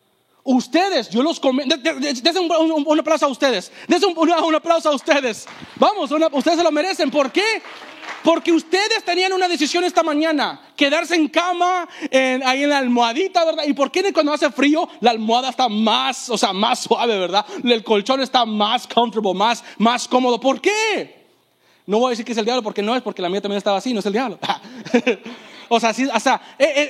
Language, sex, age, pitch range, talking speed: English, male, 30-49, 225-300 Hz, 215 wpm